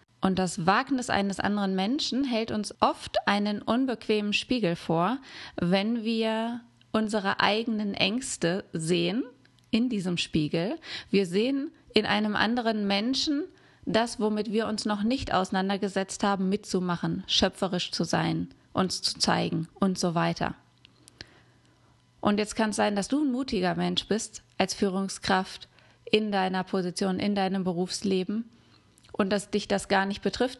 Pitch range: 185-220 Hz